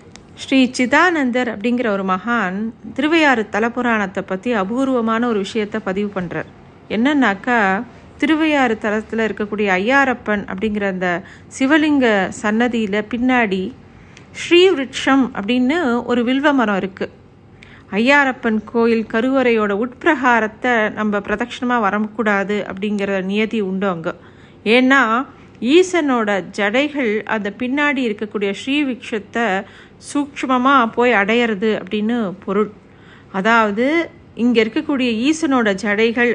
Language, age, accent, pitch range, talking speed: Tamil, 50-69, native, 205-255 Hz, 95 wpm